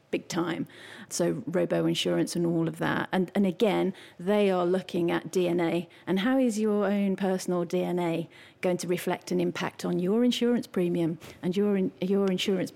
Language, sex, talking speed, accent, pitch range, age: English, female, 180 wpm, British, 170-200 Hz, 40-59